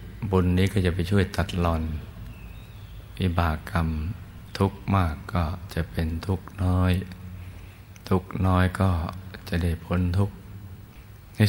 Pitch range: 85-95 Hz